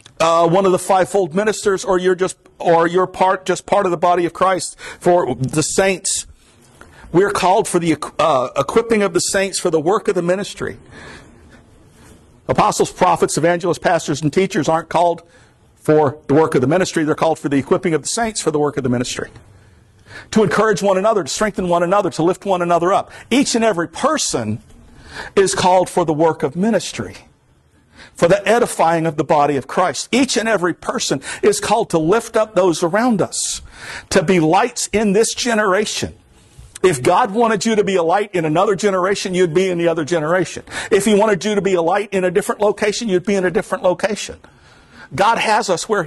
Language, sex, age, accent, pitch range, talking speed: English, male, 50-69, American, 160-205 Hz, 200 wpm